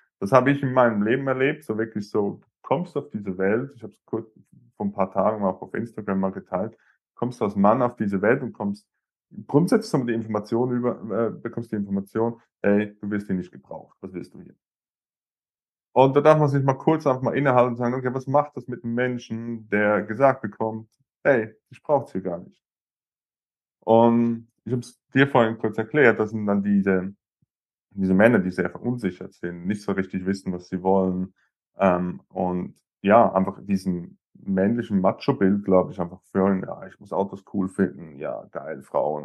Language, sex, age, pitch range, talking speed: German, male, 20-39, 95-125 Hz, 200 wpm